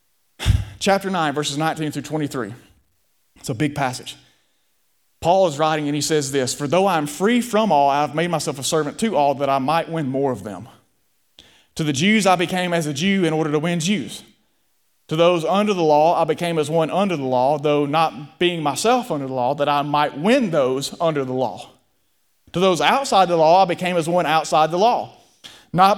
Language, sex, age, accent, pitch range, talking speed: English, male, 30-49, American, 155-235 Hz, 210 wpm